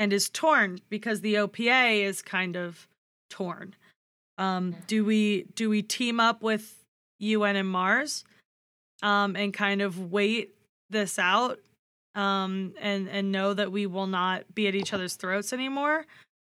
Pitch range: 195-220 Hz